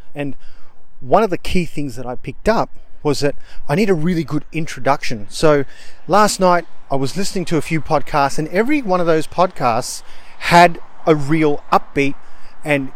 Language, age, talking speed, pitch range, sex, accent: English, 30-49, 180 wpm, 140-185 Hz, male, Australian